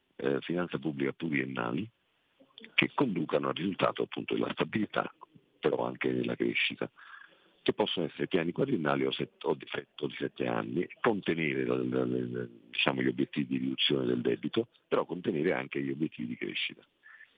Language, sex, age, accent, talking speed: Italian, male, 50-69, native, 145 wpm